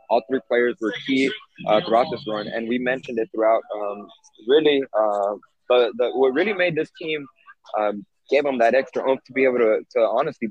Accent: American